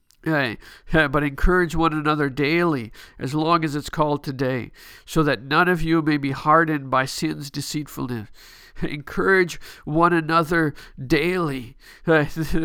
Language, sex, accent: English, male, American